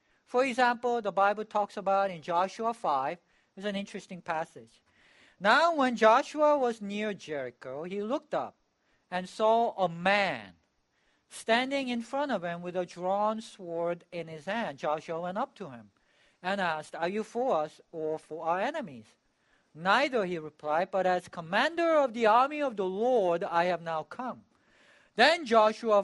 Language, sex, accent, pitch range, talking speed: English, male, Japanese, 170-240 Hz, 165 wpm